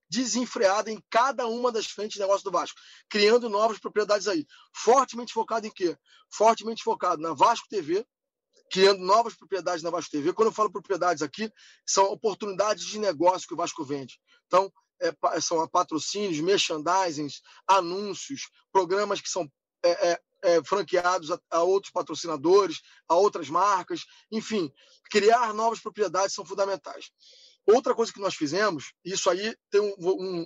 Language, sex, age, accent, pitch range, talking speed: Portuguese, male, 20-39, Brazilian, 180-235 Hz, 140 wpm